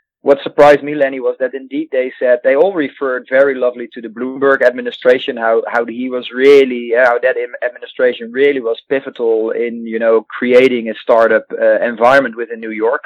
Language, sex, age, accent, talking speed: English, male, 30-49, Dutch, 185 wpm